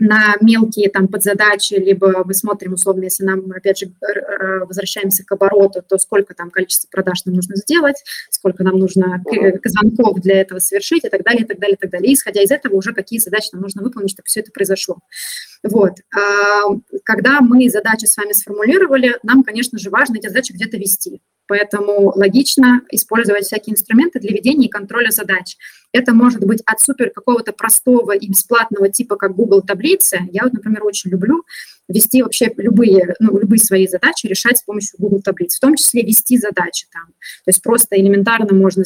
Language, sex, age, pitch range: Russian, female, 20-39, 195-230 Hz